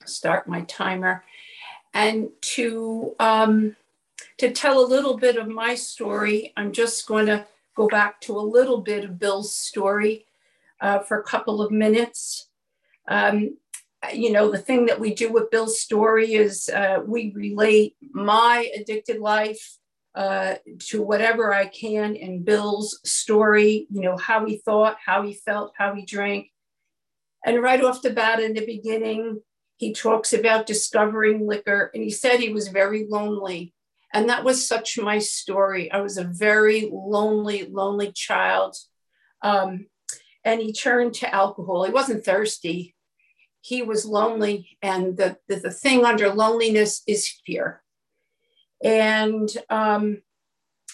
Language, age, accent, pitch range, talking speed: English, 50-69, American, 205-230 Hz, 145 wpm